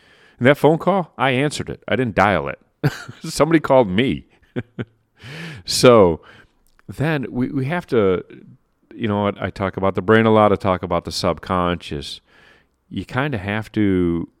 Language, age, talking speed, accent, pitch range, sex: English, 40-59, 165 wpm, American, 95-125 Hz, male